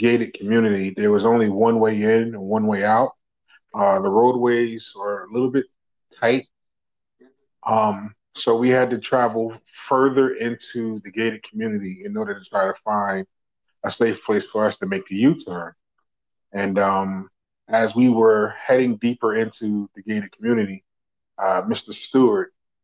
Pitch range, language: 100-125 Hz, English